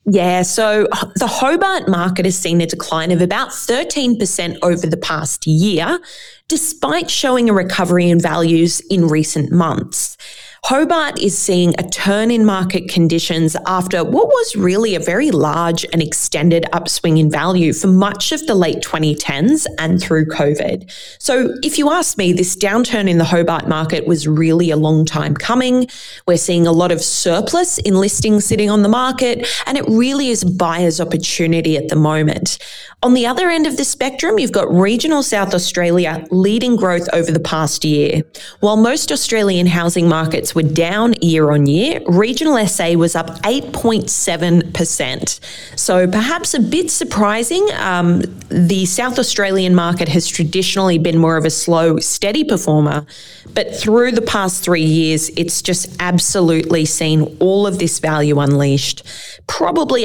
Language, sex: English, female